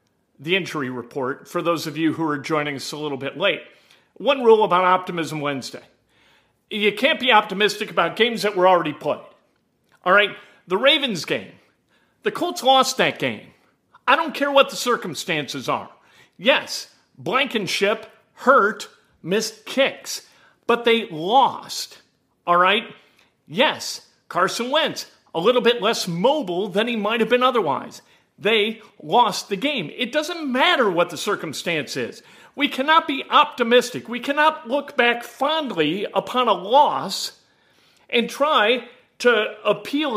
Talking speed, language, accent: 145 wpm, English, American